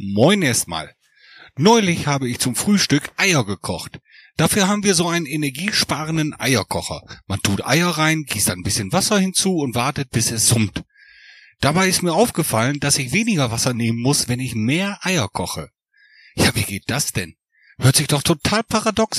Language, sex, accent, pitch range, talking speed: German, male, German, 120-180 Hz, 170 wpm